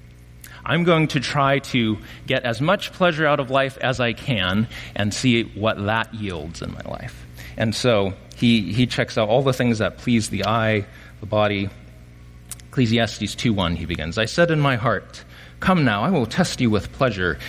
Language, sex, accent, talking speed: English, male, American, 190 wpm